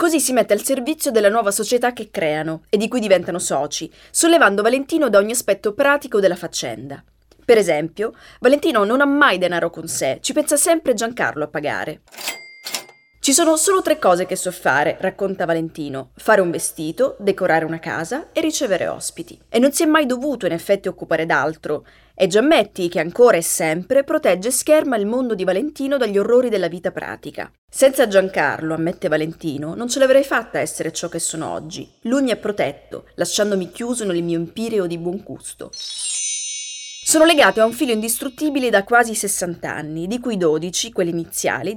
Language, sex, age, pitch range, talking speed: Italian, female, 20-39, 175-255 Hz, 180 wpm